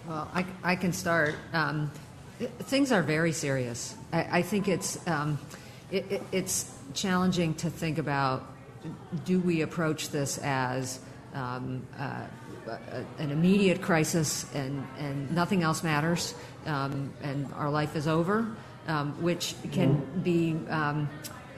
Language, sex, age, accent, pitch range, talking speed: English, female, 50-69, American, 140-165 Hz, 135 wpm